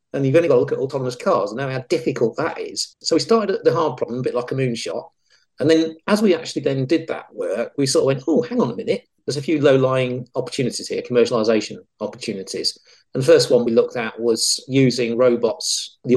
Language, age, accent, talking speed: English, 40-59, British, 240 wpm